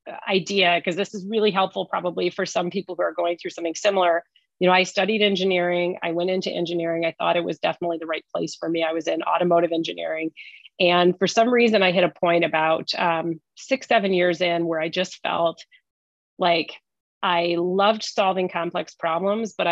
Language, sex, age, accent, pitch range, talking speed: English, female, 30-49, American, 170-195 Hz, 200 wpm